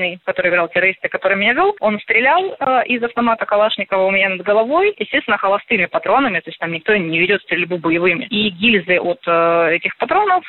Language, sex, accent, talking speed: Russian, female, native, 190 wpm